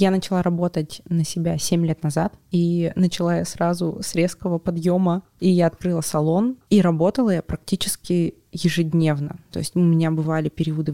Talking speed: 165 wpm